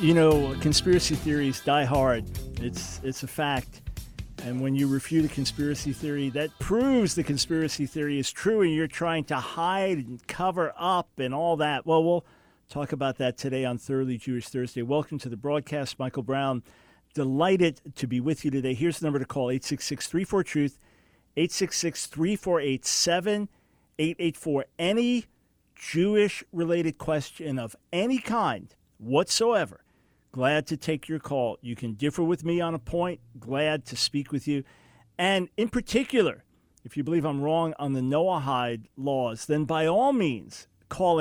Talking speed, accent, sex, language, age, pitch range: 155 wpm, American, male, English, 50-69, 130-165 Hz